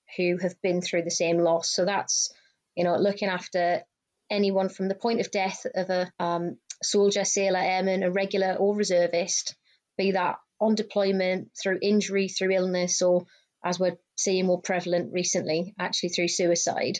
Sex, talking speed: female, 165 wpm